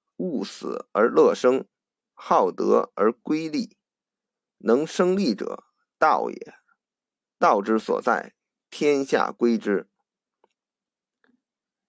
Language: Chinese